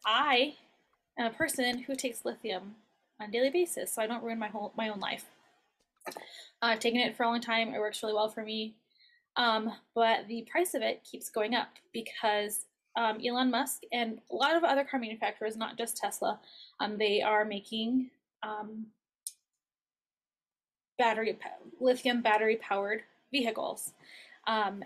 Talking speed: 165 wpm